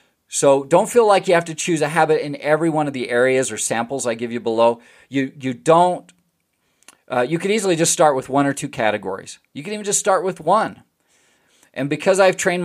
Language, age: English, 40-59